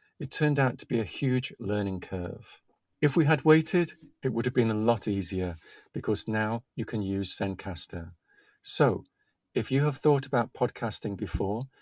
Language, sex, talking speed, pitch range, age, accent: English, male, 175 wpm, 100-125 Hz, 50-69, British